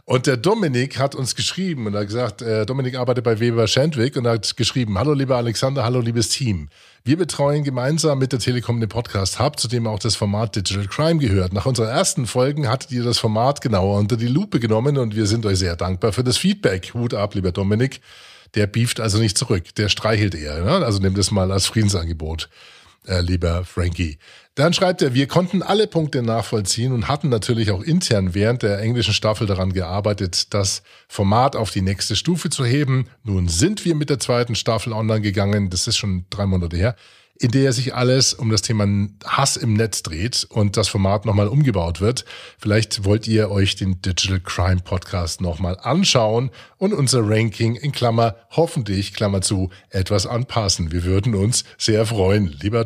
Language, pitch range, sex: German, 100-130 Hz, male